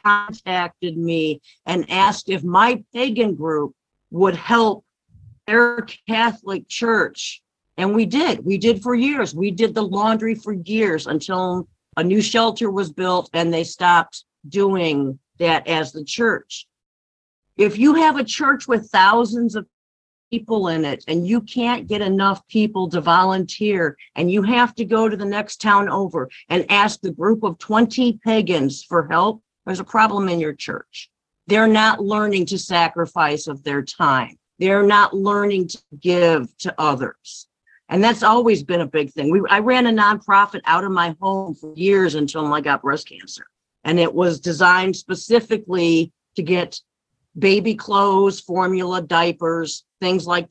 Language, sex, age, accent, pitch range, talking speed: English, female, 50-69, American, 165-215 Hz, 160 wpm